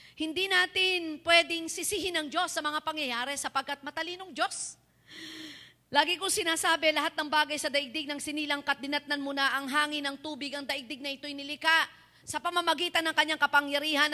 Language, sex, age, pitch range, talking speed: Filipino, female, 40-59, 275-325 Hz, 160 wpm